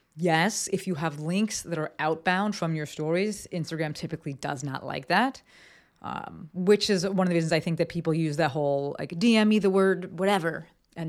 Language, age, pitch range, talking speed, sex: English, 30-49, 150-185 Hz, 205 wpm, female